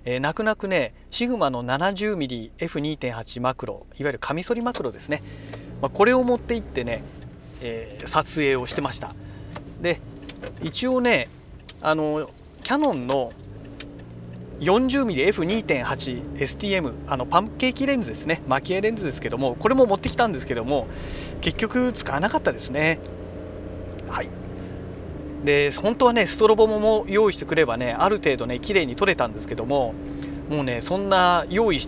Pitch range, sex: 125-200 Hz, male